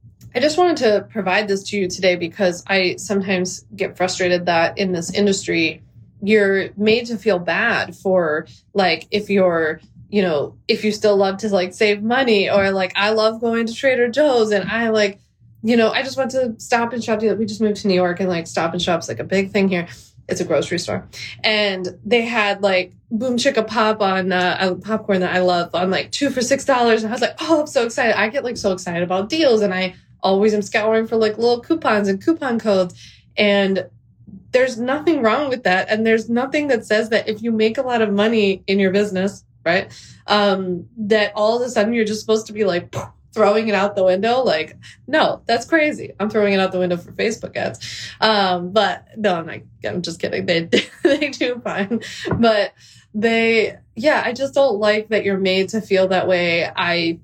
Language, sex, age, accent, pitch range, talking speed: English, female, 20-39, American, 185-230 Hz, 215 wpm